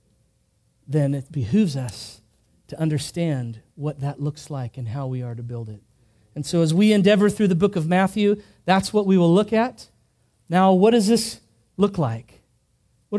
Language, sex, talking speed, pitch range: English, male, 180 wpm, 130-195 Hz